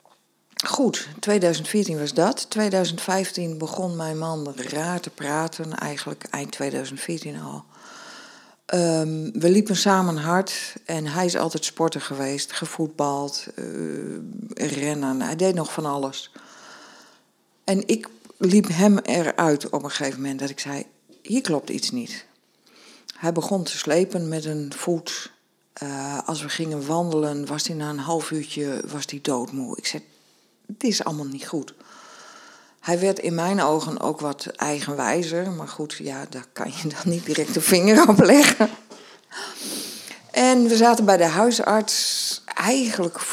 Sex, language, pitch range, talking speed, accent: female, English, 150-195 Hz, 145 wpm, Dutch